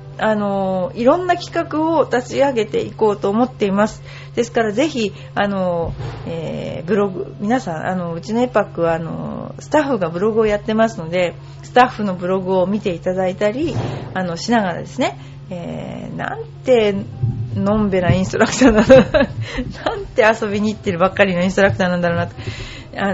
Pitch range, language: 170-225 Hz, Japanese